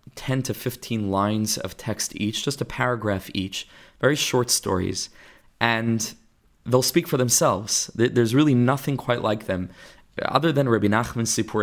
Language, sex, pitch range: English, male, 100-125 Hz